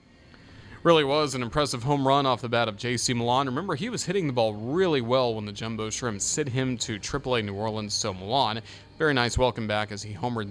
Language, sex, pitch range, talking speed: English, male, 110-155 Hz, 225 wpm